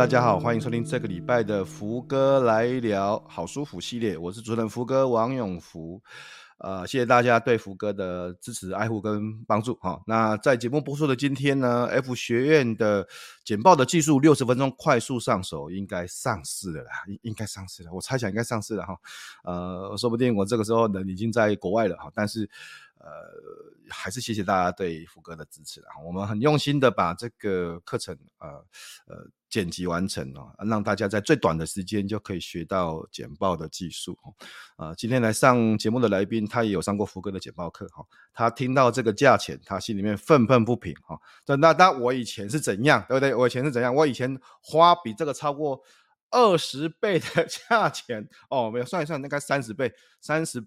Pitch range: 100-135 Hz